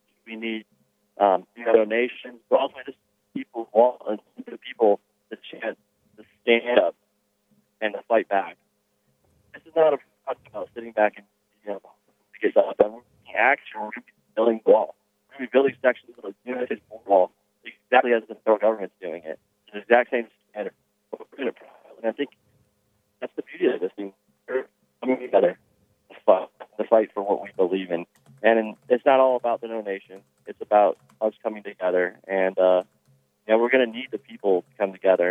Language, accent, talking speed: English, American, 170 wpm